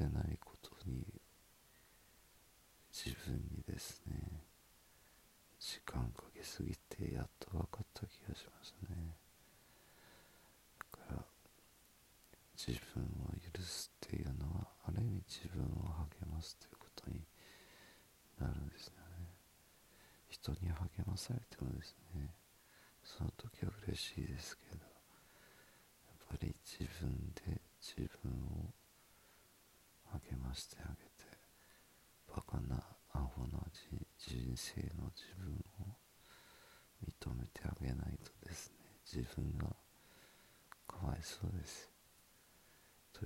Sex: male